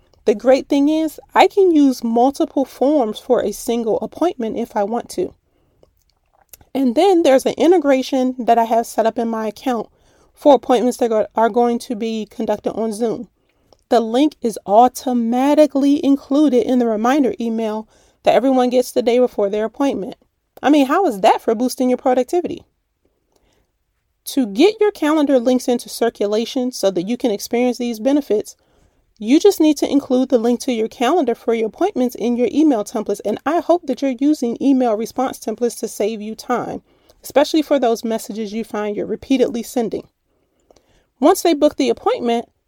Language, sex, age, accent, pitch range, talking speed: English, female, 30-49, American, 230-285 Hz, 175 wpm